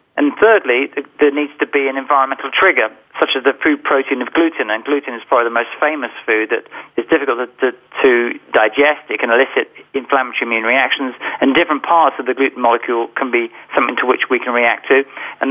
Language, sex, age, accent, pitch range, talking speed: English, male, 40-59, British, 125-145 Hz, 205 wpm